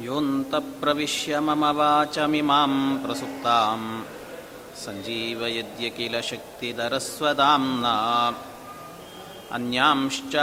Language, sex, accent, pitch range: Kannada, male, native, 120-145 Hz